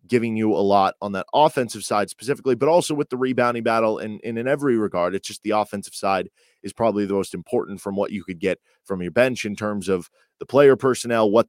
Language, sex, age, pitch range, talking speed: English, male, 20-39, 105-125 Hz, 235 wpm